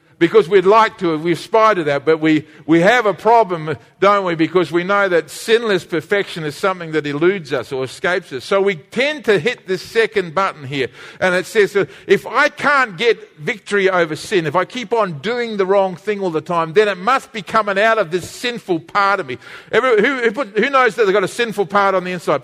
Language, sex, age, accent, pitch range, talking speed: English, male, 50-69, Australian, 155-205 Hz, 235 wpm